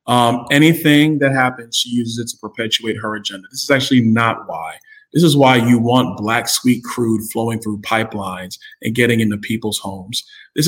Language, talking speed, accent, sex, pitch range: English, 185 wpm, American, male, 115-140 Hz